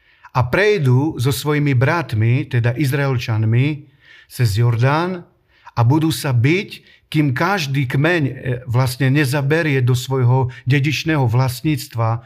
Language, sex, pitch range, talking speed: Slovak, male, 120-155 Hz, 110 wpm